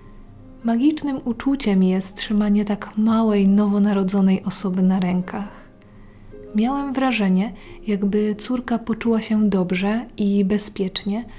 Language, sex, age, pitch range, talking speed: Polish, female, 20-39, 195-220 Hz, 100 wpm